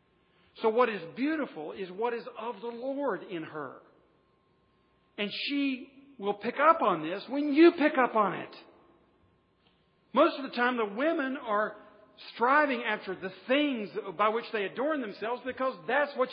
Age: 50-69